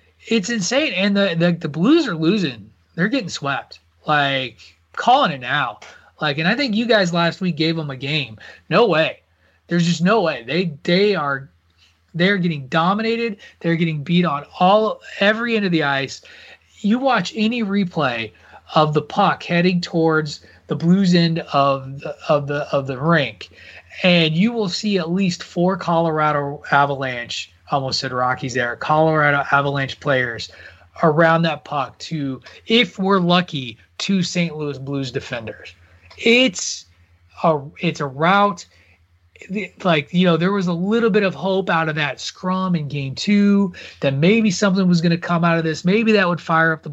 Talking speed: 175 wpm